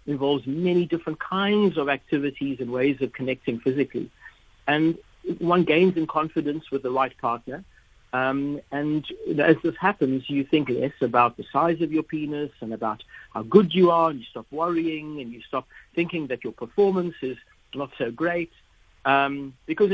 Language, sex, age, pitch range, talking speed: English, male, 60-79, 135-175 Hz, 170 wpm